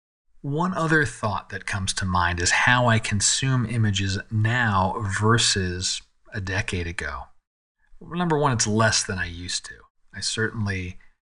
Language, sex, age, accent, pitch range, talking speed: English, male, 40-59, American, 100-125 Hz, 145 wpm